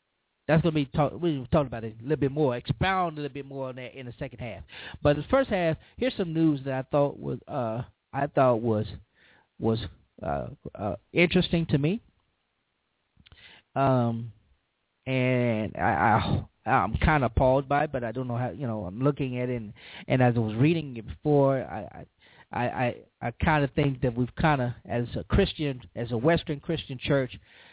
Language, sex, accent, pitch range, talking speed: English, male, American, 120-150 Hz, 195 wpm